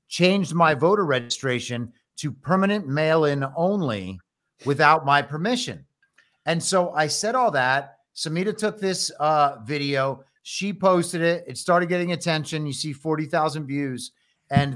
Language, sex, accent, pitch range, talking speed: English, male, American, 135-180 Hz, 140 wpm